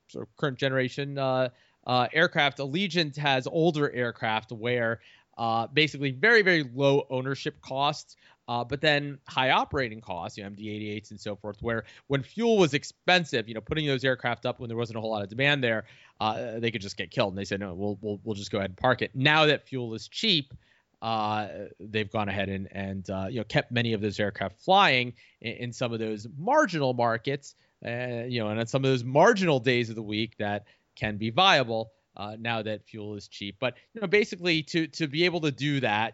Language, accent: English, American